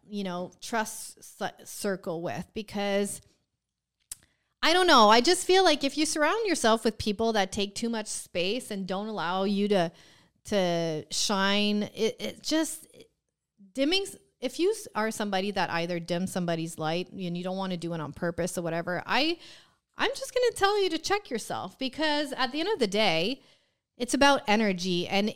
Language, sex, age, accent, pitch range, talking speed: English, female, 30-49, American, 185-245 Hz, 180 wpm